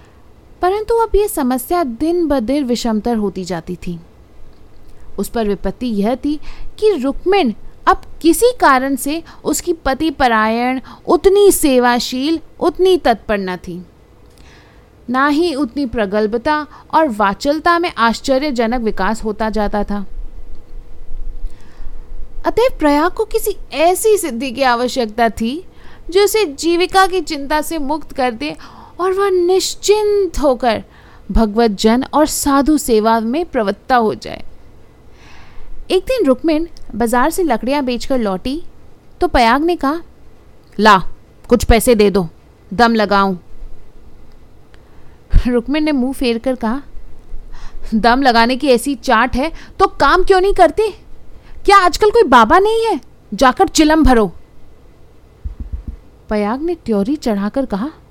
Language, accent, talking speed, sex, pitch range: Hindi, native, 125 wpm, female, 220-335 Hz